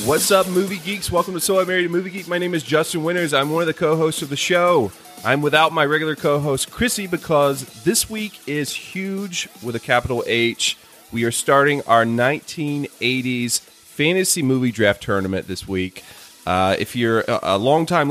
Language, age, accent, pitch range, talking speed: English, 30-49, American, 110-155 Hz, 185 wpm